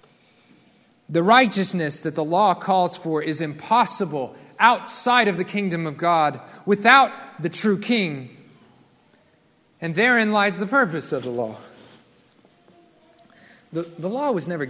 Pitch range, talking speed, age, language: 150-210 Hz, 130 wpm, 30-49, English